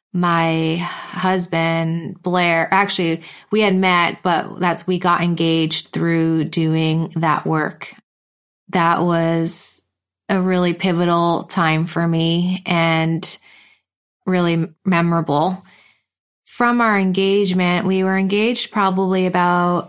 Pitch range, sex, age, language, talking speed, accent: 170-190 Hz, female, 20-39, English, 105 wpm, American